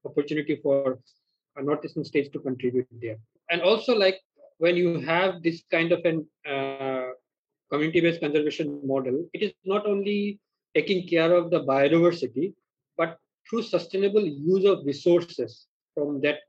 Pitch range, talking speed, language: 140-175 Hz, 145 wpm, Telugu